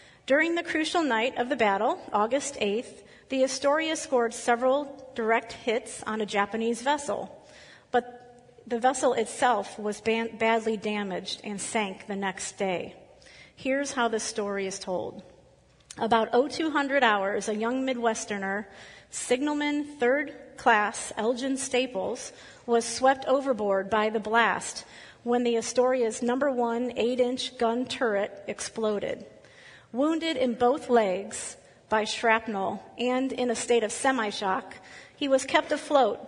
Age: 40-59